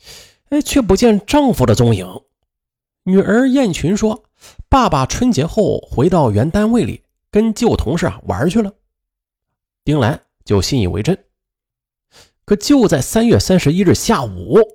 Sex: male